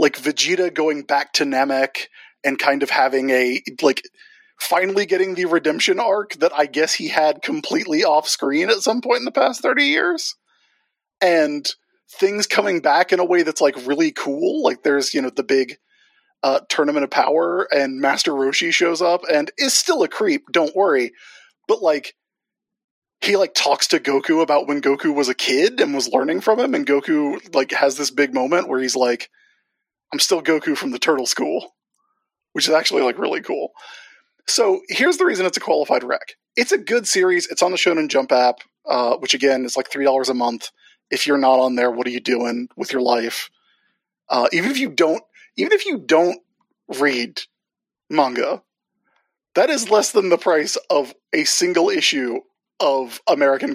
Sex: male